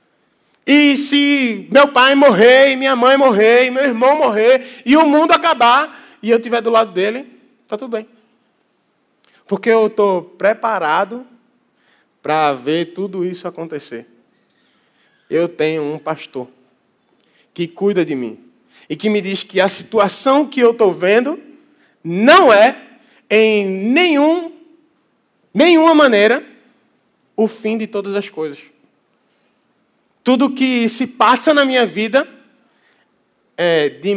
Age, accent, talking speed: 20-39, Brazilian, 125 wpm